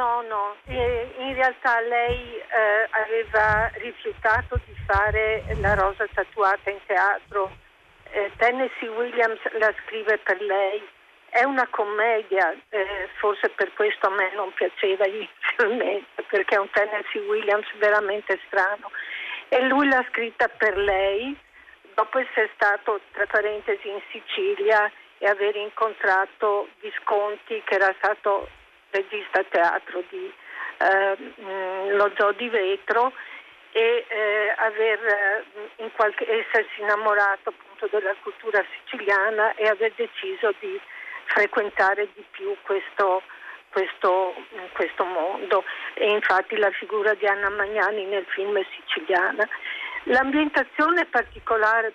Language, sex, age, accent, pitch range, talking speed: Italian, female, 50-69, native, 205-245 Hz, 125 wpm